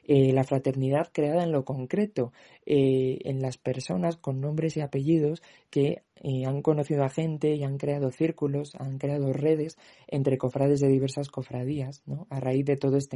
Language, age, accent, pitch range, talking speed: Spanish, 20-39, Spanish, 130-150 Hz, 180 wpm